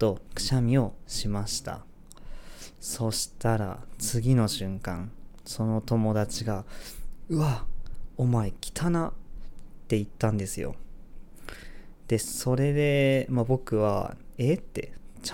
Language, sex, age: Japanese, male, 20-39